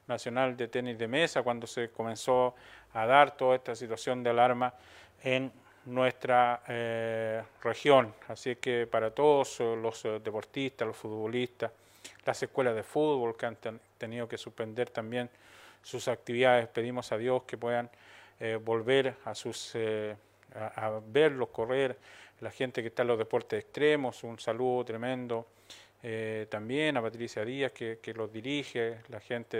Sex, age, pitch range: male, 40-59, 115-130 Hz